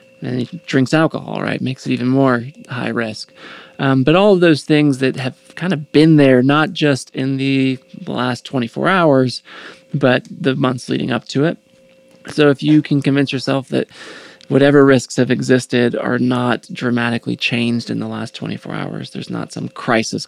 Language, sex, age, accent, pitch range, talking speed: English, male, 20-39, American, 120-145 Hz, 180 wpm